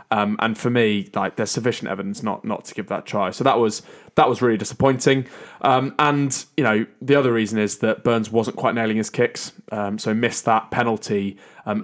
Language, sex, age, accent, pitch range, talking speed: English, male, 20-39, British, 105-120 Hz, 220 wpm